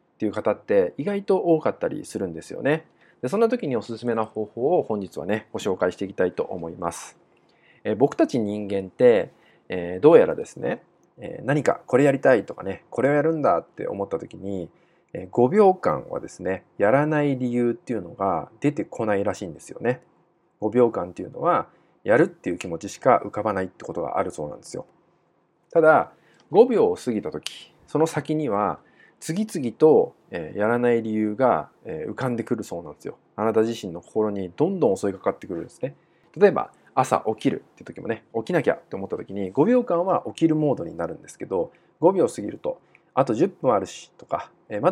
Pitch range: 110-170 Hz